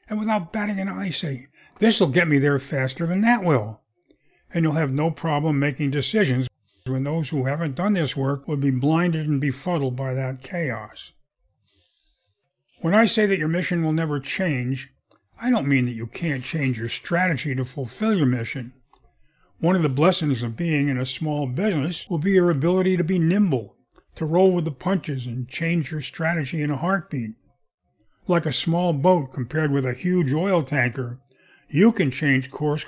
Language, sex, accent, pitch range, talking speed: English, male, American, 135-180 Hz, 185 wpm